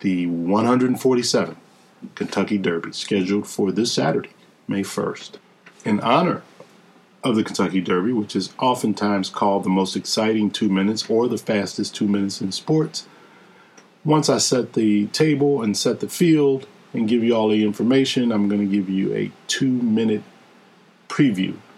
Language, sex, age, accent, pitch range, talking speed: English, male, 50-69, American, 100-120 Hz, 150 wpm